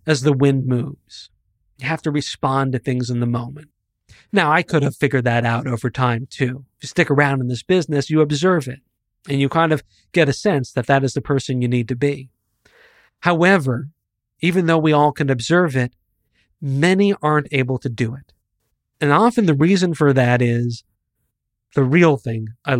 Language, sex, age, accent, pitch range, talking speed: English, male, 40-59, American, 120-155 Hz, 195 wpm